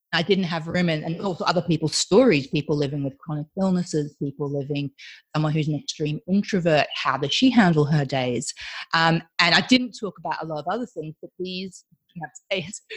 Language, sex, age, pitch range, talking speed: English, female, 30-49, 155-210 Hz, 200 wpm